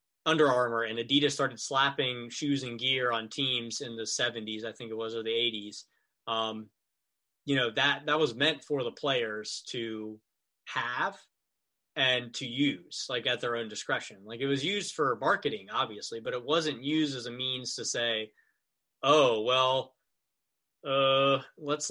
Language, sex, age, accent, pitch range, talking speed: English, male, 20-39, American, 120-145 Hz, 165 wpm